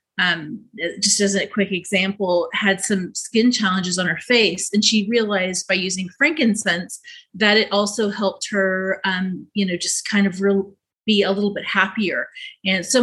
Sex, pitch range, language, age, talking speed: female, 195-235 Hz, English, 30-49, 175 wpm